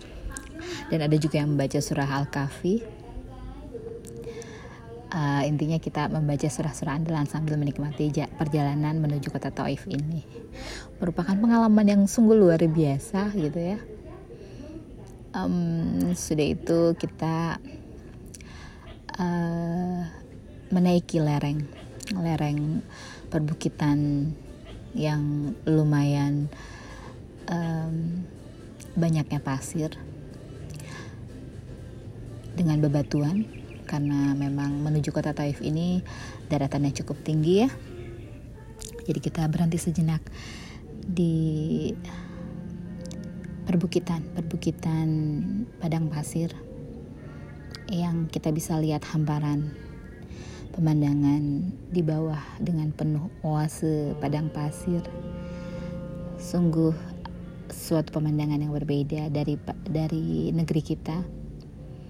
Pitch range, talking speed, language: 145-170 Hz, 85 wpm, Indonesian